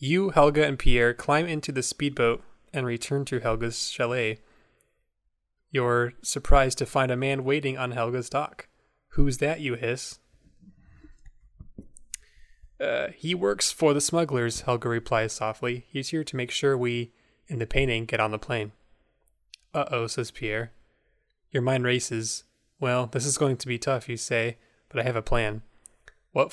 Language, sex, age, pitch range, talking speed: English, male, 20-39, 120-145 Hz, 160 wpm